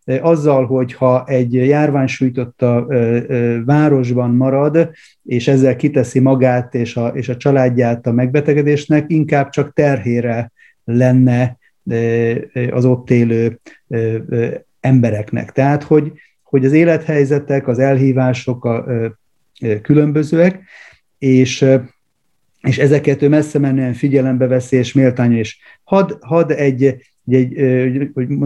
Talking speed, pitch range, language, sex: 105 wpm, 125-150 Hz, Hungarian, male